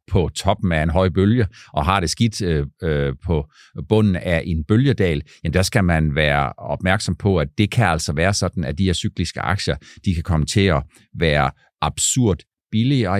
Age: 50-69